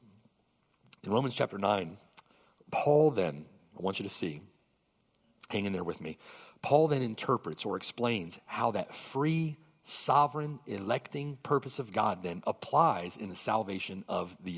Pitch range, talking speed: 115-160 Hz, 150 wpm